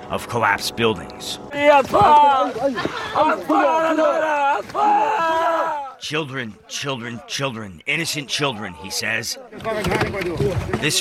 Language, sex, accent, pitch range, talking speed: English, male, American, 115-150 Hz, 60 wpm